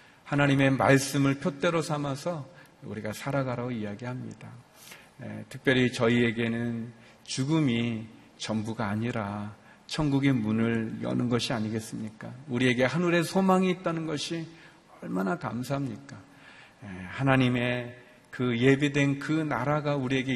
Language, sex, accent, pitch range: Korean, male, native, 115-145 Hz